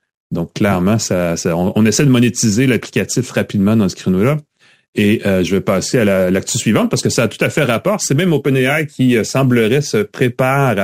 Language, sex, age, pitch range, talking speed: French, male, 30-49, 100-130 Hz, 210 wpm